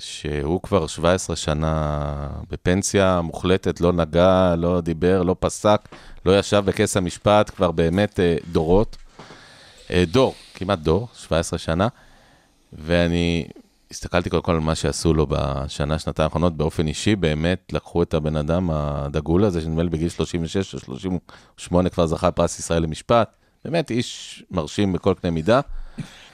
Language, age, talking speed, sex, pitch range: Hebrew, 30-49, 135 wpm, male, 80-95 Hz